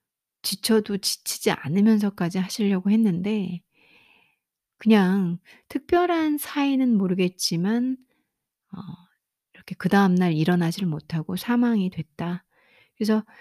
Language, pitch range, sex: Korean, 175-220 Hz, female